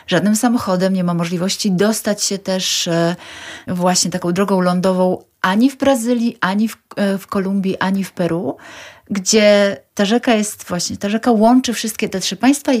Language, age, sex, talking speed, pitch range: Polish, 30-49, female, 160 wpm, 175-225 Hz